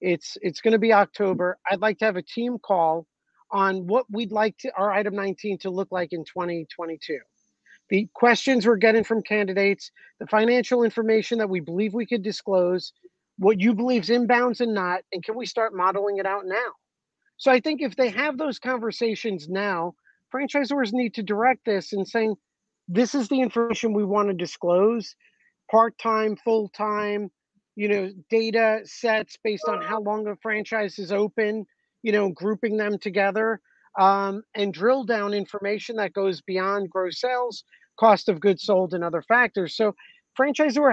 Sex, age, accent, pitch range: male, 40-59, American, 195-240 Hz